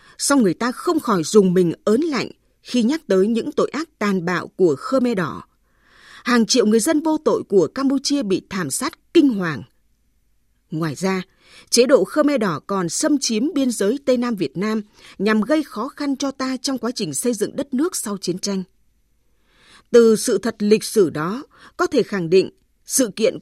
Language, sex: Vietnamese, female